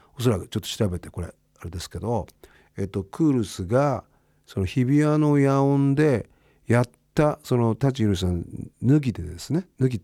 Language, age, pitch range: Japanese, 50-69, 110-180 Hz